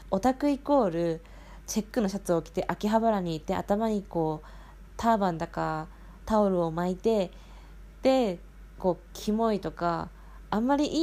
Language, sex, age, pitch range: Japanese, female, 20-39, 175-225 Hz